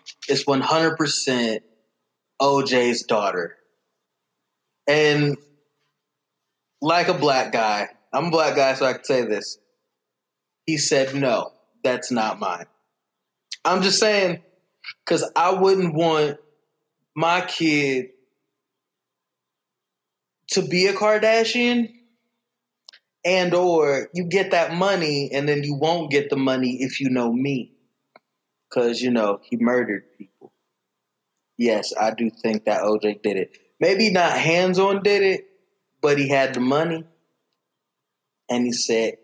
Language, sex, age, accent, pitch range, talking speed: English, male, 20-39, American, 135-185 Hz, 125 wpm